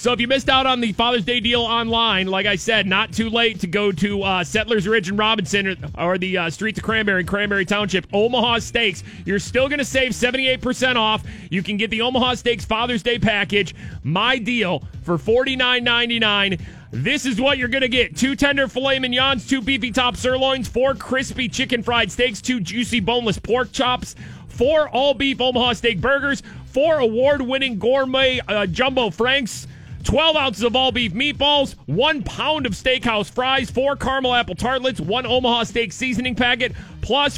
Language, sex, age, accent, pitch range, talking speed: English, male, 30-49, American, 215-260 Hz, 180 wpm